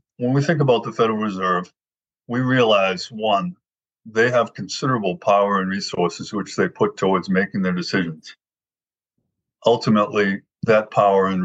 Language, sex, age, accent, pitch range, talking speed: English, male, 50-69, American, 95-115 Hz, 140 wpm